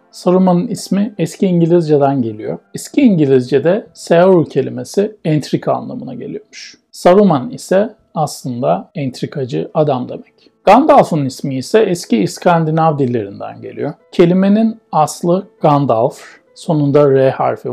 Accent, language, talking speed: native, Turkish, 105 wpm